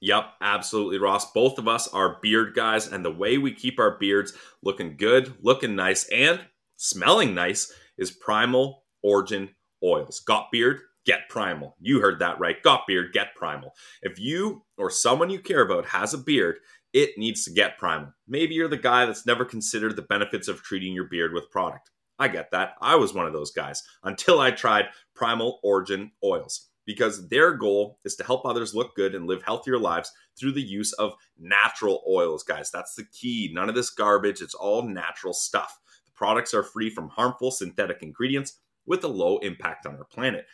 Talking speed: 190 wpm